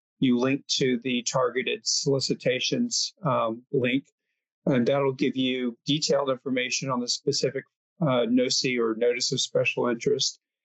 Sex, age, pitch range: male, 50-69, 120-140 Hz